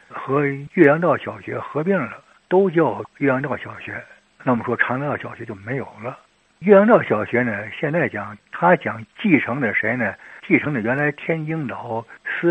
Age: 60-79